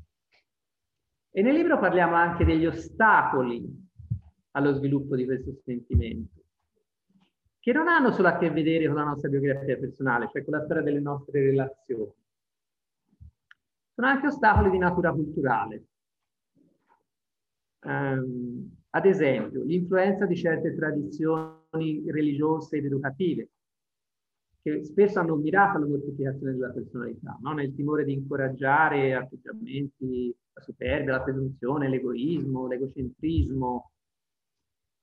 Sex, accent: male, native